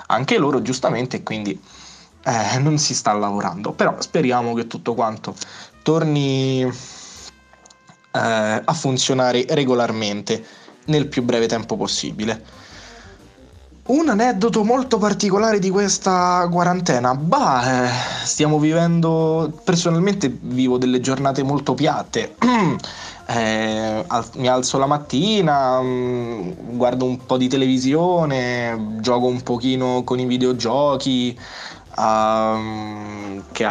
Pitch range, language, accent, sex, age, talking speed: 120-150 Hz, Italian, native, male, 20-39, 100 wpm